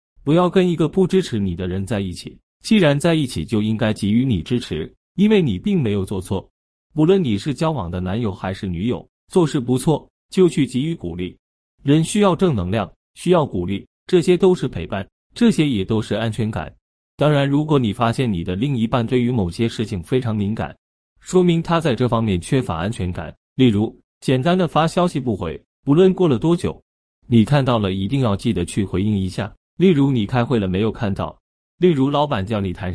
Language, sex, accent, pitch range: Chinese, male, native, 95-150 Hz